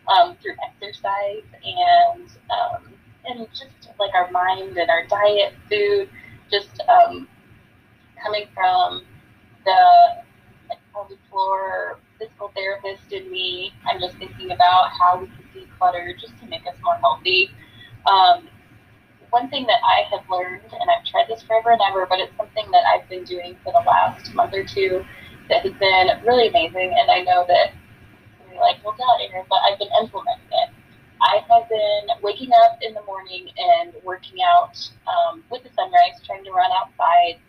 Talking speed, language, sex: 155 wpm, English, female